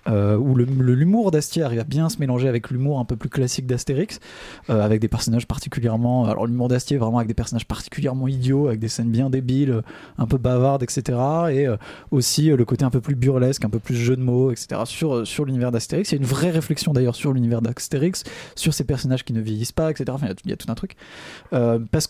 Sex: male